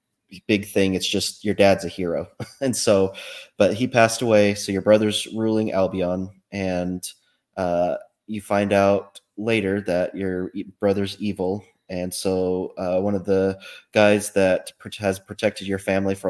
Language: English